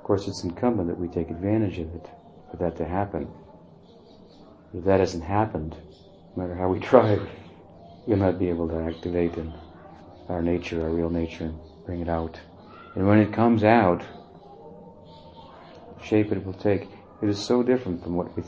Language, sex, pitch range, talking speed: English, male, 85-105 Hz, 180 wpm